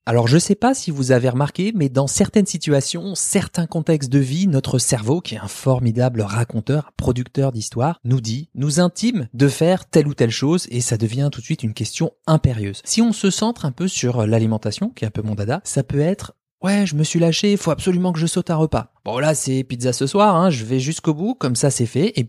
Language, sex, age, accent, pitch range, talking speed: French, male, 20-39, French, 125-165 Hz, 250 wpm